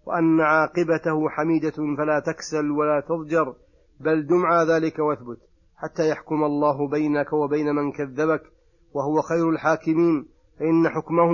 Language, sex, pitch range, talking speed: Arabic, male, 145-160 Hz, 120 wpm